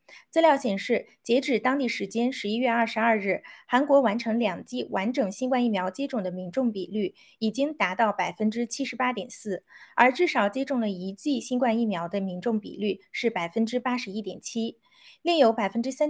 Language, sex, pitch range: Chinese, female, 205-275 Hz